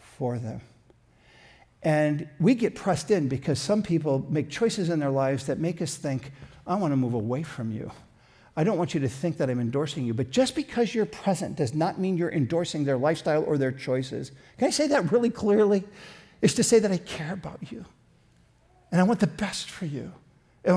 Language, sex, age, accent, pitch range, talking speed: English, male, 50-69, American, 135-190 Hz, 210 wpm